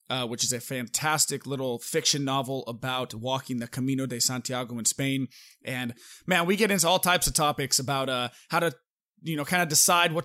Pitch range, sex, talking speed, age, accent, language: 130-160 Hz, male, 205 wpm, 20-39, American, English